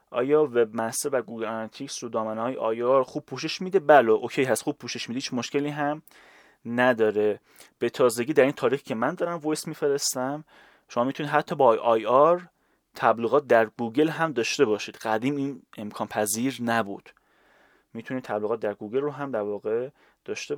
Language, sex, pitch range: Persian, male, 110-150 Hz